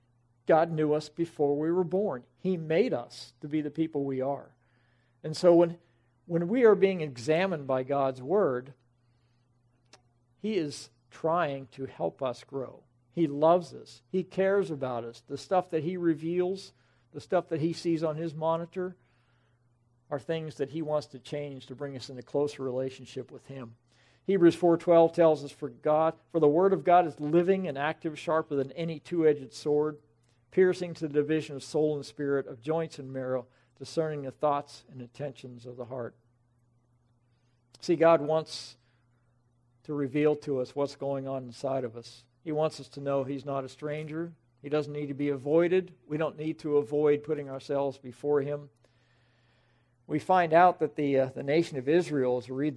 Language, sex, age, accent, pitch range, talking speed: English, male, 50-69, American, 125-160 Hz, 180 wpm